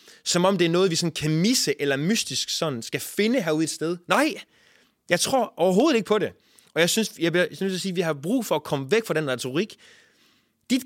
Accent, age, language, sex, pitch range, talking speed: Danish, 20-39, English, male, 150-215 Hz, 250 wpm